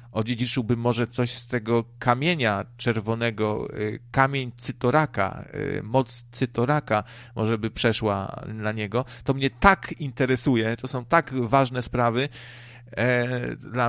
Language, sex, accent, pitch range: Polish, male, native, 115-125 Hz